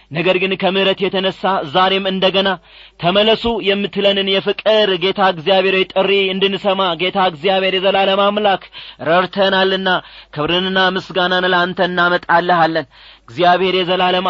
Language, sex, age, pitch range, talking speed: Amharic, male, 30-49, 185-205 Hz, 100 wpm